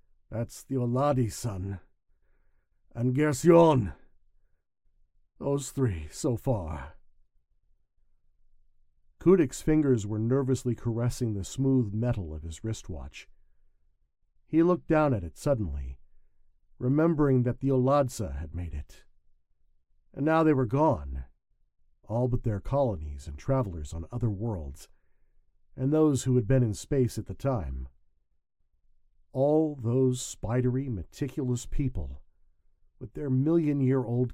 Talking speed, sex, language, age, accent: 115 wpm, male, English, 50-69, American